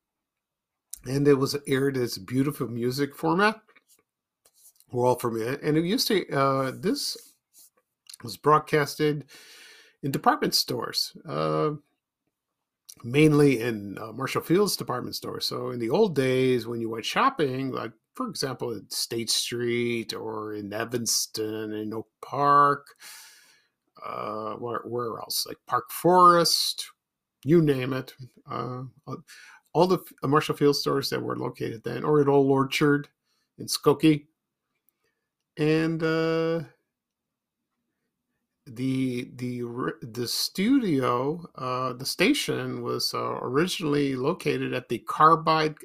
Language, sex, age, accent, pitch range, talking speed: English, male, 50-69, American, 120-155 Hz, 120 wpm